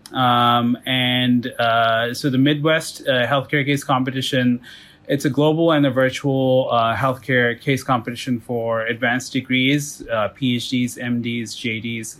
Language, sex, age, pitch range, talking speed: English, male, 20-39, 120-140 Hz, 135 wpm